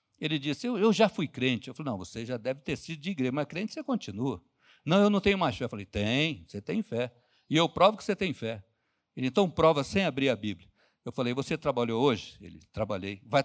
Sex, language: male, Portuguese